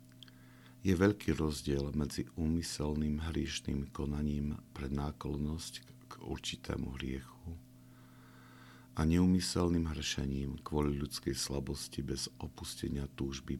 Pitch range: 65-85 Hz